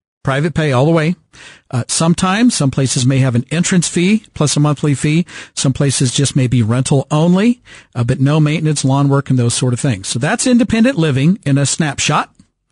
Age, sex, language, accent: 50-69, male, English, American